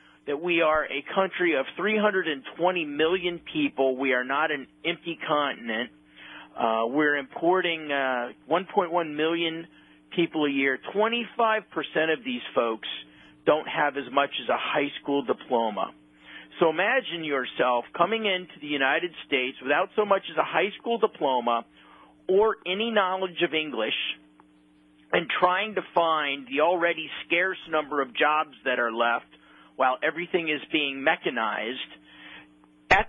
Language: English